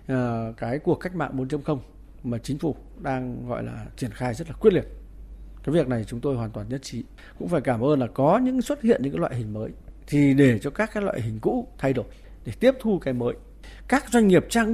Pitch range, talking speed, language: 125-190 Hz, 240 wpm, Vietnamese